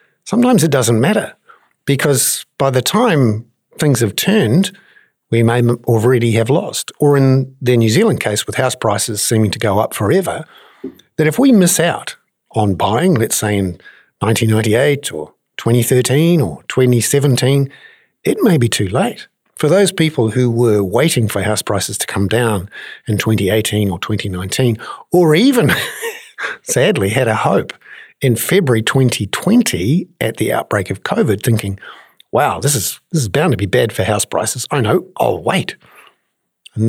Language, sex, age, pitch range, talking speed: English, male, 50-69, 110-145 Hz, 160 wpm